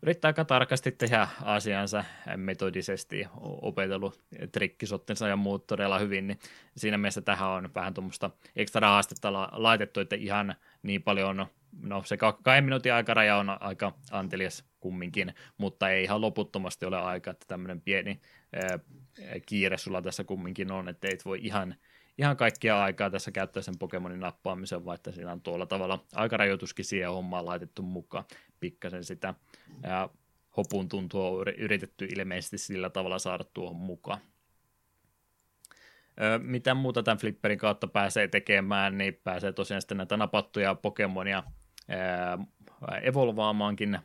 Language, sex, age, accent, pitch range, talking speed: Finnish, male, 20-39, native, 95-105 Hz, 130 wpm